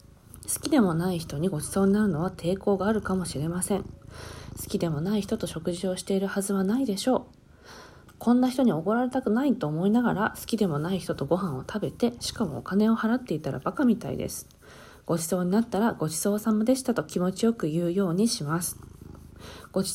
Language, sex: Japanese, female